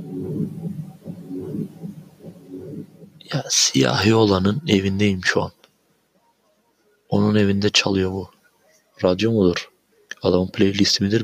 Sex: male